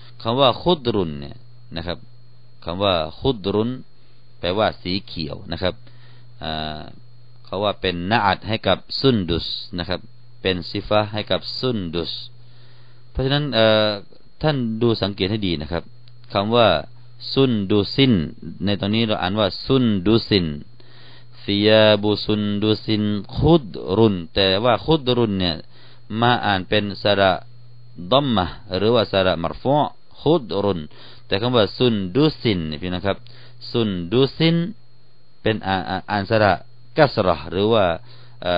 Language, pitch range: Thai, 90-120 Hz